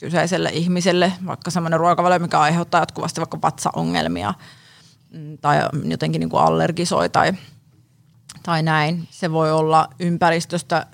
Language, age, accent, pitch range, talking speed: Finnish, 30-49, native, 160-190 Hz, 120 wpm